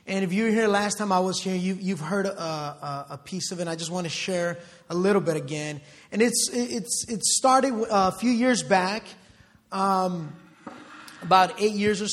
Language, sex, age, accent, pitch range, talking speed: English, male, 20-39, American, 160-195 Hz, 210 wpm